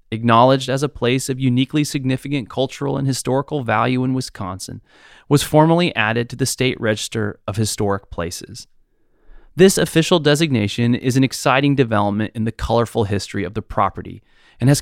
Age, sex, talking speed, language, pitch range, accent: 30-49, male, 160 wpm, English, 105-140 Hz, American